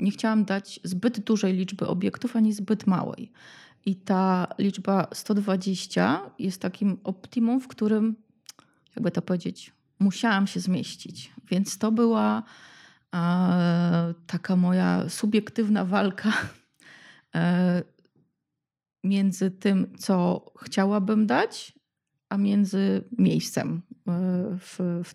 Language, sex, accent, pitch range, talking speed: Polish, female, native, 175-205 Hz, 100 wpm